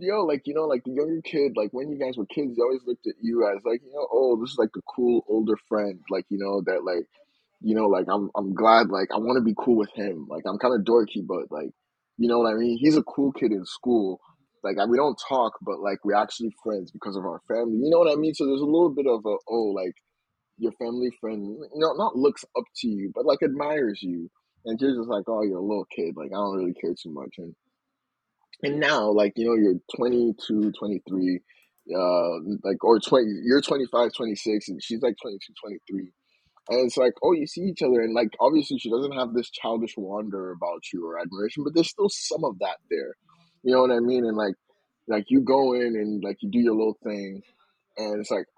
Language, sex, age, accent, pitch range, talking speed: English, male, 20-39, American, 105-150 Hz, 240 wpm